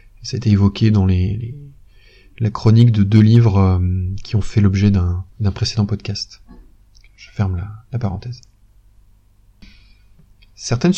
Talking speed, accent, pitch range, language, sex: 130 wpm, French, 100-130 Hz, French, male